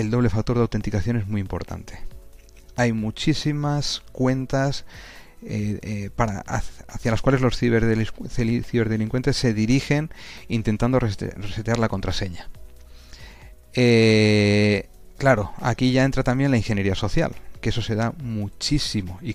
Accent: Spanish